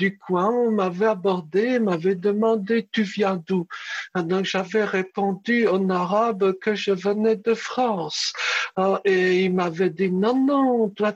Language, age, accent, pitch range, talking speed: French, 60-79, French, 185-215 Hz, 140 wpm